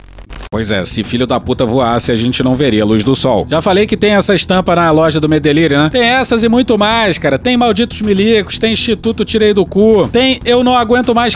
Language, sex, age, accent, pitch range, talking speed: Portuguese, male, 40-59, Brazilian, 125-185 Hz, 240 wpm